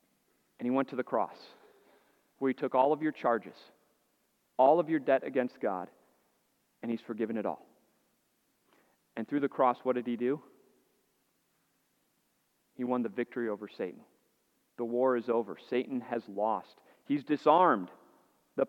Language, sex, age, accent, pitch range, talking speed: English, male, 40-59, American, 130-180 Hz, 155 wpm